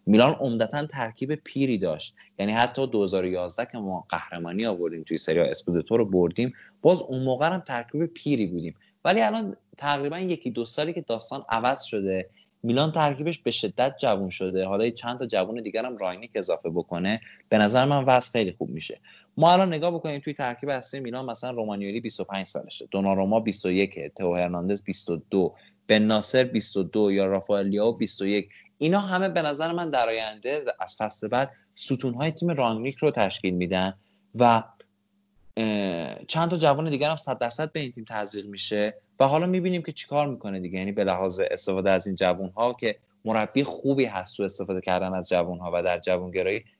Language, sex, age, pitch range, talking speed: Persian, male, 20-39, 100-145 Hz, 175 wpm